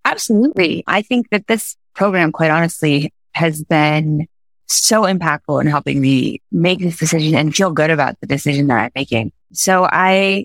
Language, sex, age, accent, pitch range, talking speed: English, female, 20-39, American, 155-200 Hz, 165 wpm